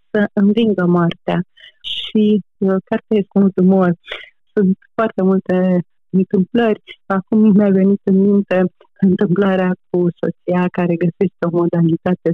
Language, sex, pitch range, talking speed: Romanian, female, 170-210 Hz, 120 wpm